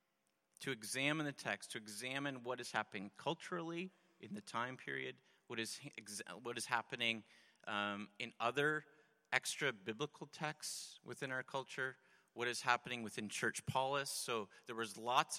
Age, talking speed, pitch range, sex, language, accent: 40-59, 150 wpm, 115-140 Hz, male, English, American